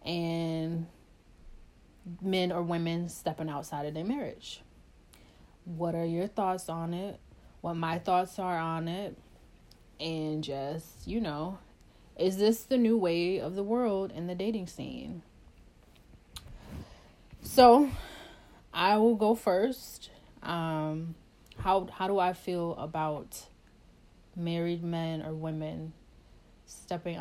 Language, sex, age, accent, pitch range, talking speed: English, female, 20-39, American, 160-185 Hz, 120 wpm